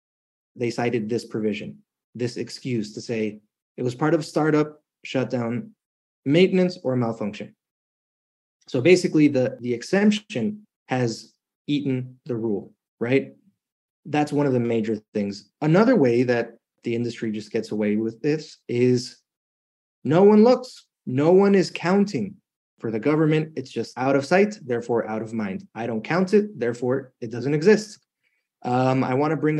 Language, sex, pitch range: English, male, 115-150 Hz